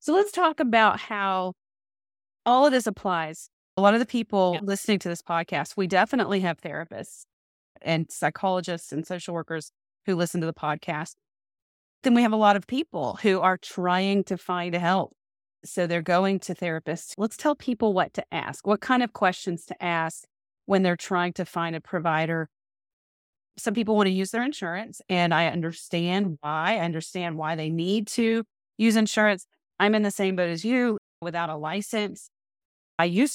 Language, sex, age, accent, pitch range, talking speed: English, female, 30-49, American, 165-210 Hz, 180 wpm